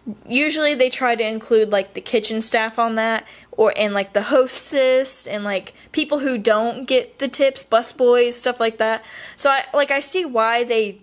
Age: 10-29